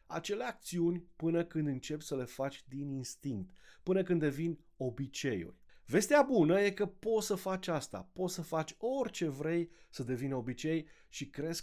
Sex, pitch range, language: male, 135-185 Hz, Romanian